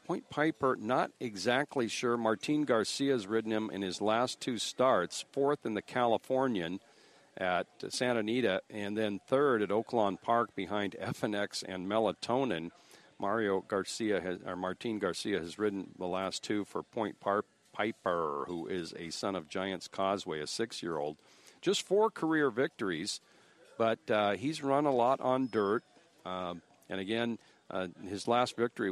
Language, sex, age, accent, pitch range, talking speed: English, male, 50-69, American, 95-120 Hz, 155 wpm